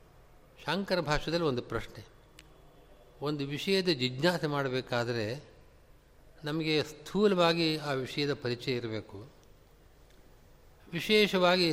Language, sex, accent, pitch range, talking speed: Kannada, male, native, 130-160 Hz, 75 wpm